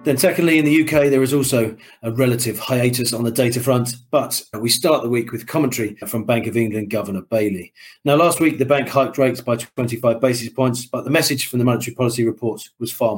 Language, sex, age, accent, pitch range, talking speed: English, male, 40-59, British, 110-130 Hz, 225 wpm